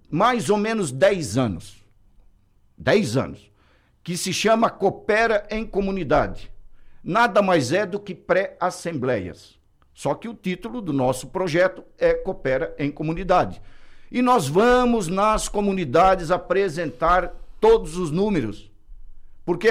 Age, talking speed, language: 60-79, 120 wpm, Portuguese